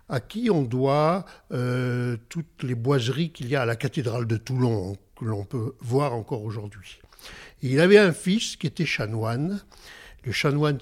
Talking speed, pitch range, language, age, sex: 180 wpm, 120-170 Hz, French, 60-79, male